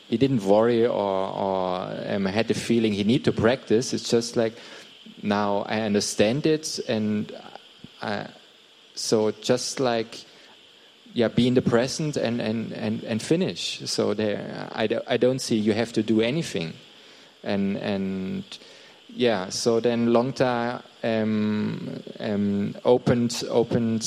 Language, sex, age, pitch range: Thai, male, 20-39, 110-125 Hz